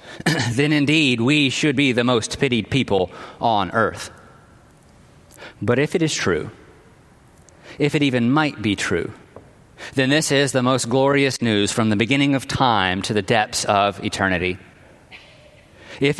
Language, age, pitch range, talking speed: English, 40-59, 135-175 Hz, 150 wpm